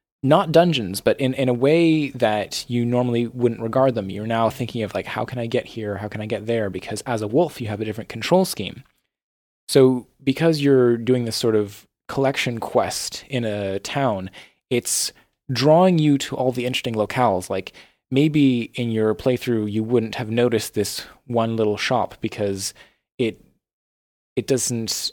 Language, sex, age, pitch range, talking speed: English, male, 20-39, 105-125 Hz, 180 wpm